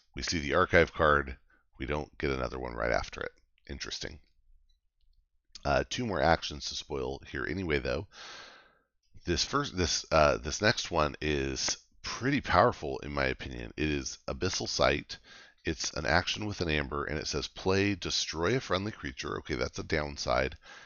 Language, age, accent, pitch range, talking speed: English, 40-59, American, 70-90 Hz, 165 wpm